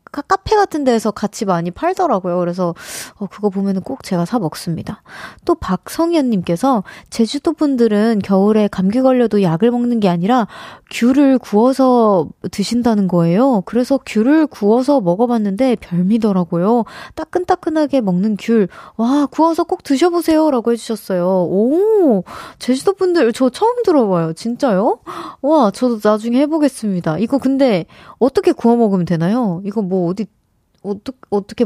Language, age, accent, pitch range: Korean, 20-39, native, 195-270 Hz